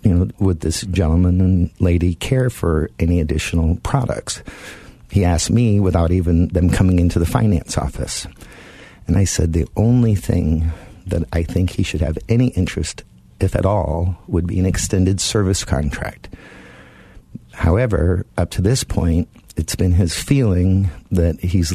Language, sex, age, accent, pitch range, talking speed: English, male, 50-69, American, 85-100 Hz, 155 wpm